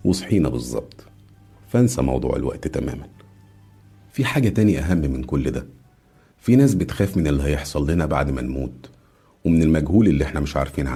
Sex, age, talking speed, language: male, 50-69, 160 wpm, Arabic